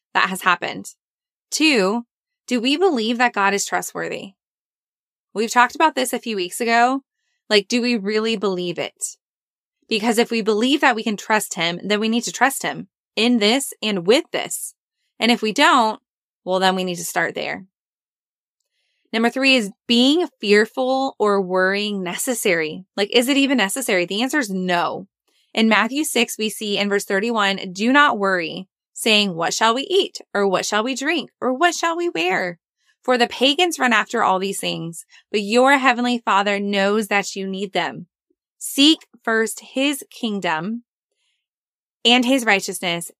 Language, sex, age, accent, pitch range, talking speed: English, female, 20-39, American, 195-250 Hz, 170 wpm